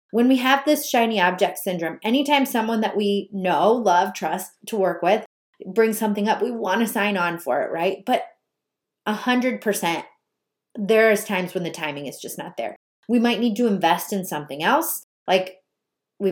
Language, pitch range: English, 180-225 Hz